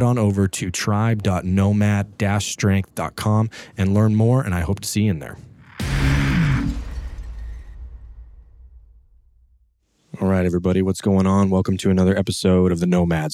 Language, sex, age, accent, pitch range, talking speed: English, male, 30-49, American, 85-105 Hz, 125 wpm